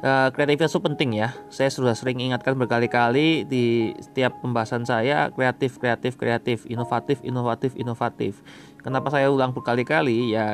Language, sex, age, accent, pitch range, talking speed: Indonesian, male, 20-39, native, 110-130 Hz, 135 wpm